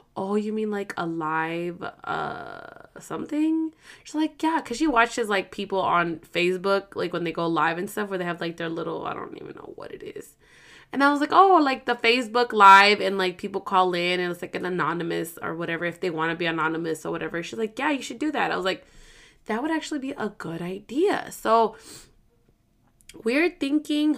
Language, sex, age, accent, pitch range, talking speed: English, female, 20-39, American, 185-280 Hz, 215 wpm